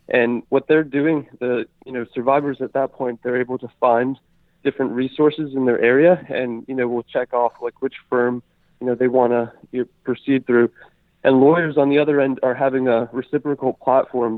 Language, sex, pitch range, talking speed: English, male, 120-135 Hz, 205 wpm